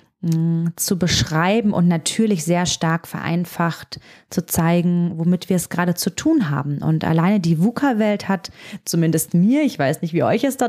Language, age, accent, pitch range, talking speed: German, 30-49, German, 165-195 Hz, 170 wpm